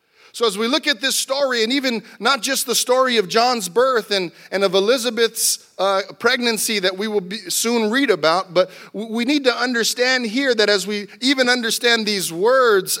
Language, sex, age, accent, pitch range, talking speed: English, male, 40-59, American, 200-250 Hz, 190 wpm